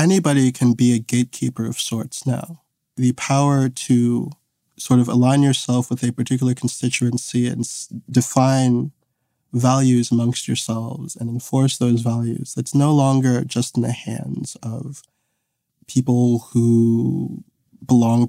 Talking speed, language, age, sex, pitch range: 130 wpm, English, 20-39, male, 120-140 Hz